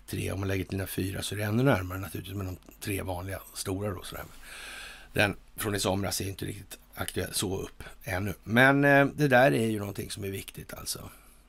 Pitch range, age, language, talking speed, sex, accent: 95-125 Hz, 60-79, Swedish, 220 wpm, male, native